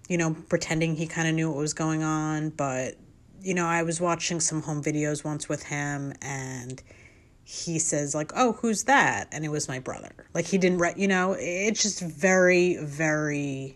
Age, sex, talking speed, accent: 30-49, female, 195 wpm, American